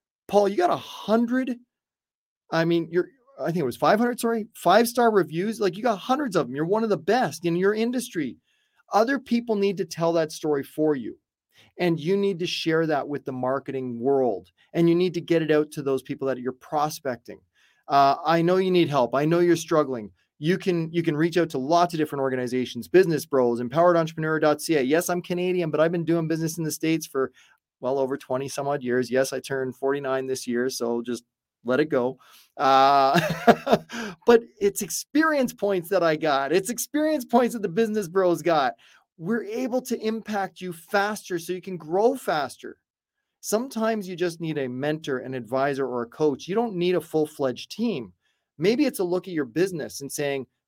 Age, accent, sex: 30-49, American, male